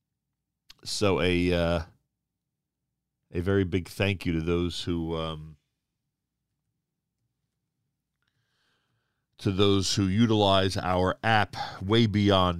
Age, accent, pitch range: 40-59, American, 95-130 Hz